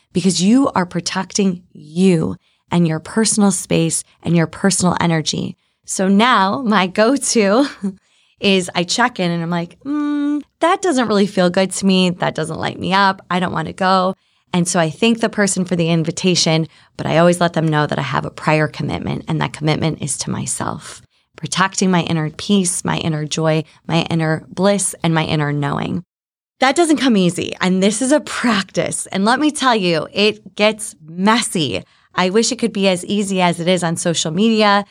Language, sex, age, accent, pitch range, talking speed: English, female, 20-39, American, 170-220 Hz, 195 wpm